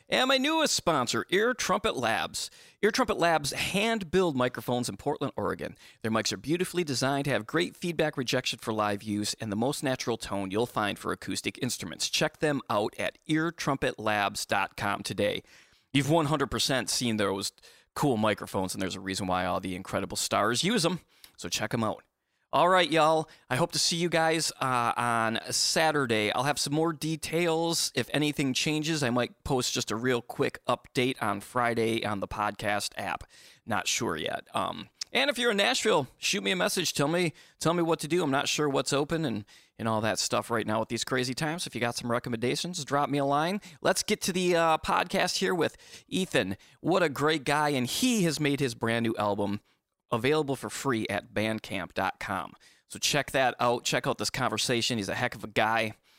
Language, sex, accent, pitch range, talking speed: English, male, American, 110-160 Hz, 195 wpm